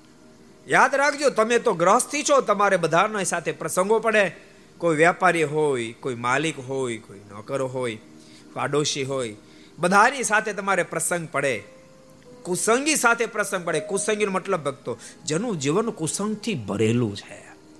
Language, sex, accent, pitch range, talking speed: Gujarati, male, native, 125-200 Hz, 55 wpm